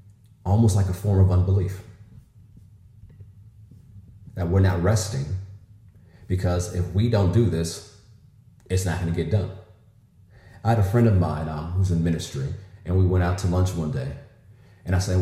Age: 30-49